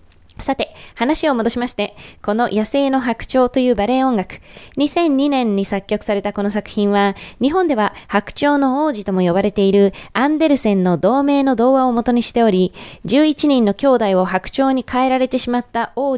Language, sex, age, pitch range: Japanese, female, 20-39, 195-260 Hz